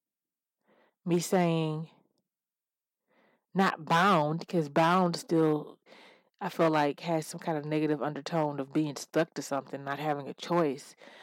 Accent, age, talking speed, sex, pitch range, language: American, 30-49, 135 wpm, female, 145-175 Hz, English